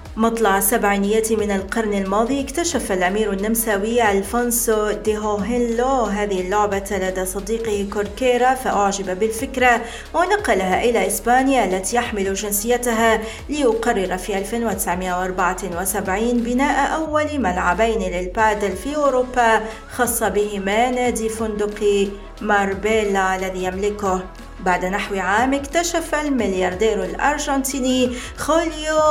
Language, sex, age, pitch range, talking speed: Arabic, female, 40-59, 195-240 Hz, 95 wpm